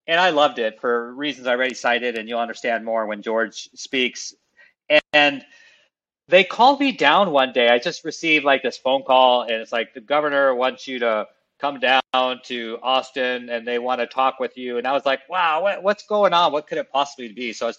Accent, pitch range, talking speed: American, 125-165 Hz, 220 wpm